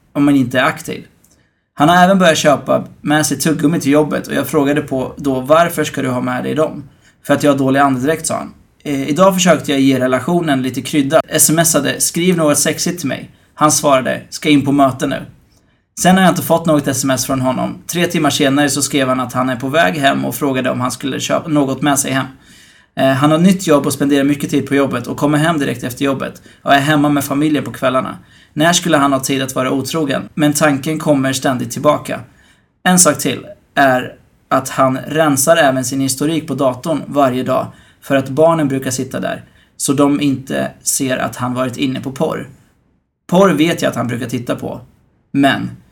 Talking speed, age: 210 wpm, 20-39